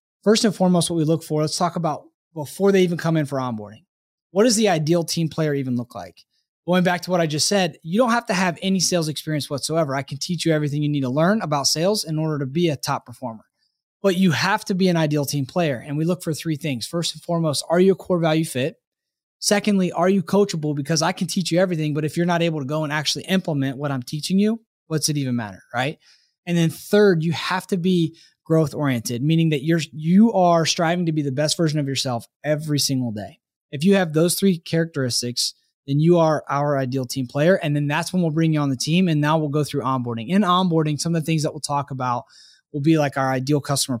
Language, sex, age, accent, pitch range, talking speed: English, male, 20-39, American, 145-175 Hz, 250 wpm